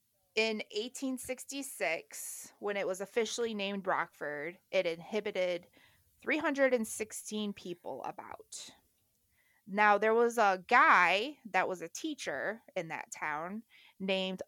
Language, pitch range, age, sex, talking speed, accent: English, 170-220 Hz, 20-39, female, 110 wpm, American